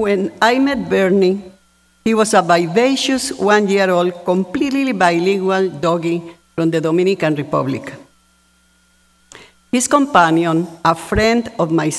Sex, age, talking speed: female, 50-69, 110 wpm